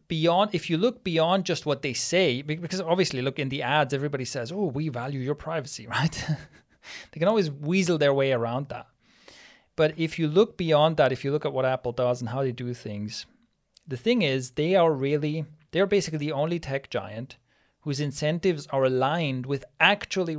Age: 30-49